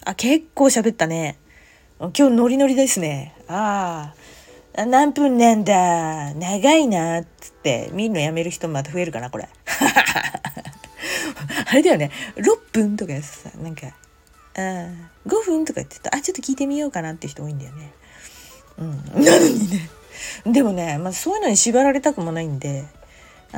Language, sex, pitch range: Japanese, female, 160-260 Hz